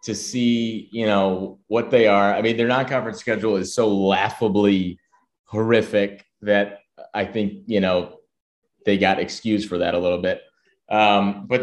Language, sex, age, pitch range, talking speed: English, male, 20-39, 100-130 Hz, 160 wpm